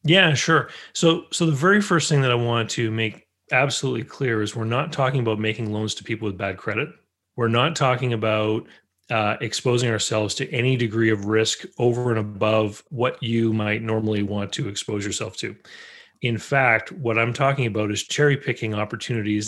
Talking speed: 190 wpm